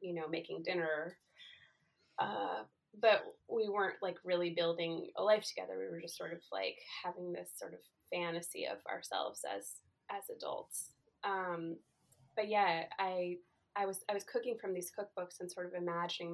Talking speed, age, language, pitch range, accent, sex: 170 wpm, 20-39, English, 170-215 Hz, American, female